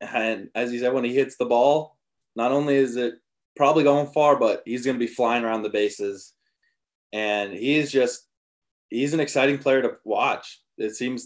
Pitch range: 110-130 Hz